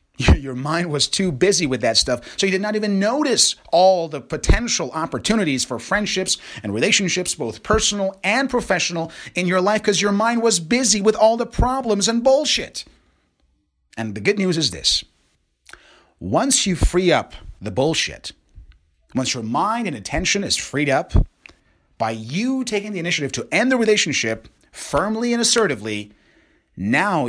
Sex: male